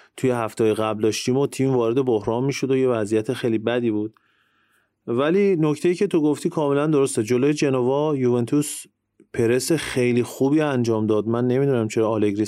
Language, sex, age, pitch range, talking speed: English, male, 30-49, 110-135 Hz, 165 wpm